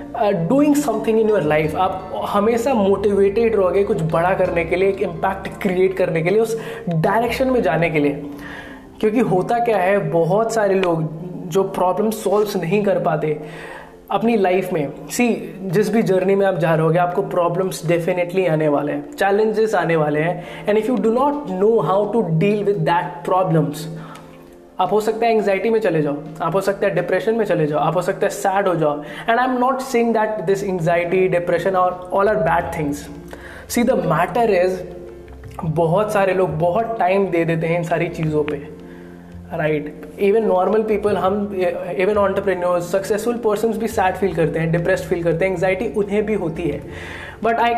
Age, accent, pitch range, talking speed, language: 20-39, native, 165-215 Hz, 190 wpm, Hindi